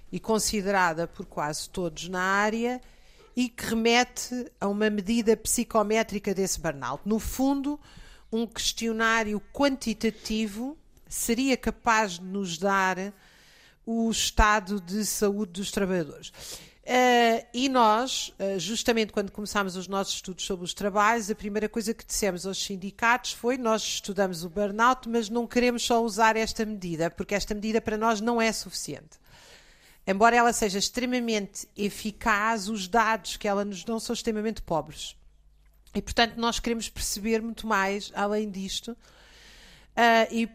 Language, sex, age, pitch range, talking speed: Portuguese, female, 50-69, 195-230 Hz, 140 wpm